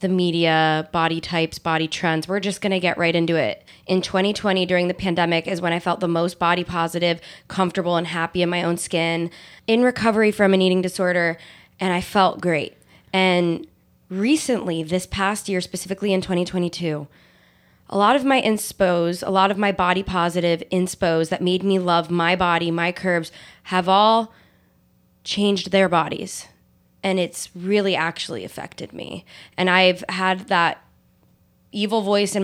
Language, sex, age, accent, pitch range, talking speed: English, female, 20-39, American, 170-195 Hz, 165 wpm